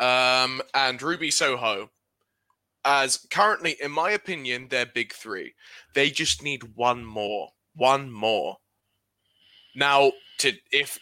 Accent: British